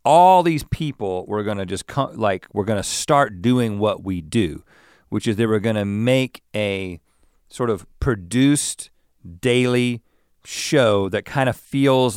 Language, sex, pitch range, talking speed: English, male, 95-125 Hz, 155 wpm